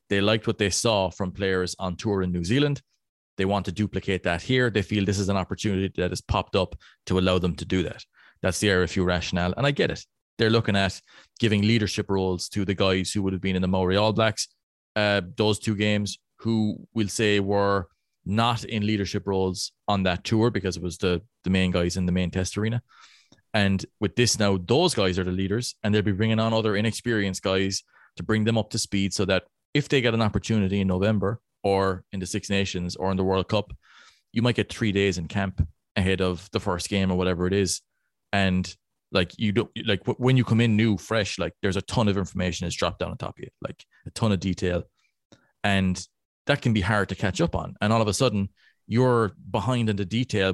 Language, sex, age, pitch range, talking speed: English, male, 20-39, 95-110 Hz, 230 wpm